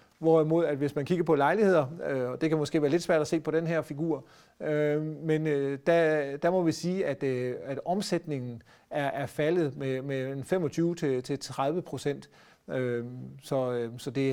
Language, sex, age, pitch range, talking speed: Danish, male, 40-59, 130-165 Hz, 145 wpm